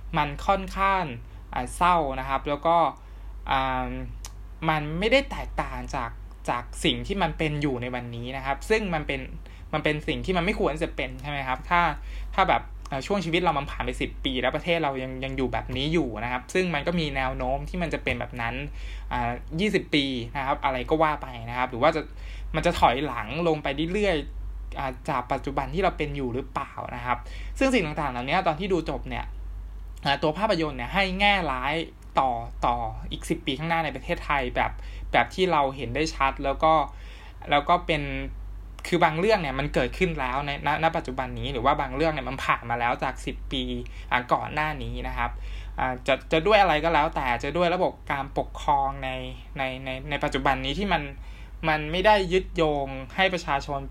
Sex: male